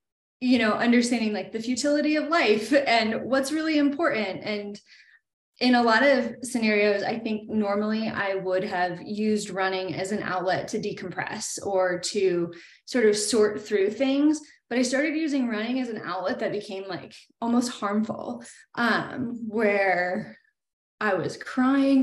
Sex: female